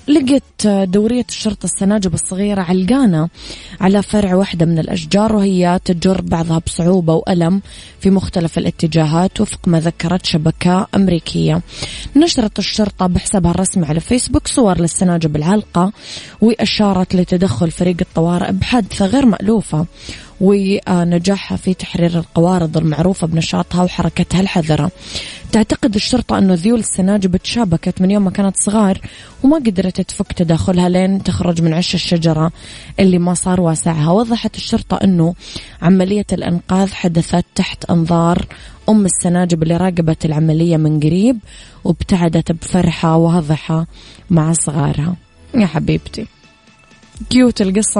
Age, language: 20-39, Arabic